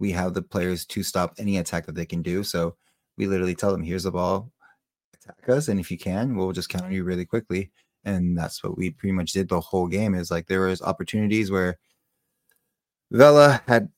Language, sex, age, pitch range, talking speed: English, male, 20-39, 90-105 Hz, 220 wpm